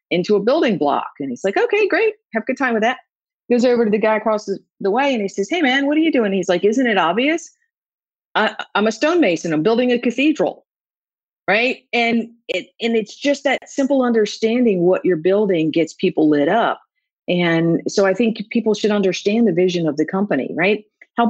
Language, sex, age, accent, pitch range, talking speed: English, female, 40-59, American, 175-250 Hz, 210 wpm